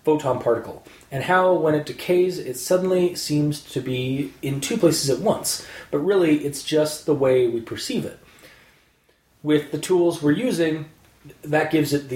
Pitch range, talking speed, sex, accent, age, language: 135-165 Hz, 170 wpm, male, American, 30-49, English